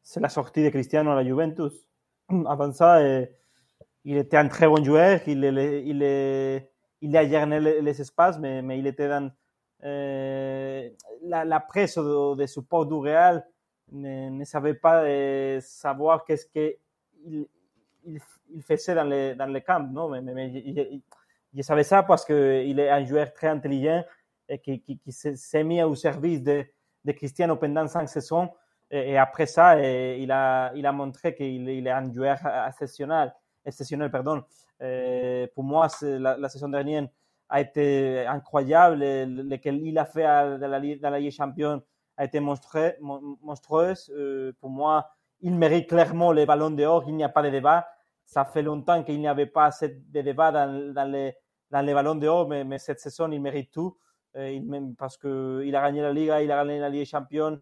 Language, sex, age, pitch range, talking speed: French, male, 30-49, 135-155 Hz, 175 wpm